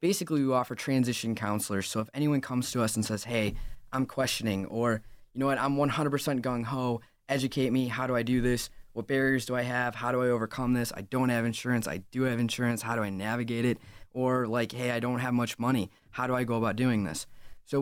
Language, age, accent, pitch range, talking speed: English, 20-39, American, 105-130 Hz, 230 wpm